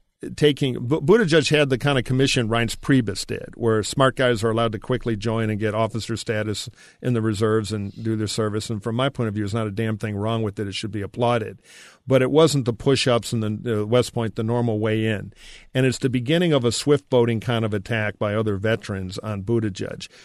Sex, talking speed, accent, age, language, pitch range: male, 230 wpm, American, 50-69, English, 110-125 Hz